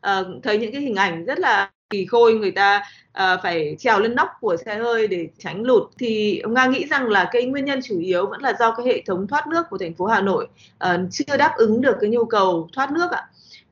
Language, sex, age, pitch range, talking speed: Vietnamese, female, 20-39, 190-255 Hz, 260 wpm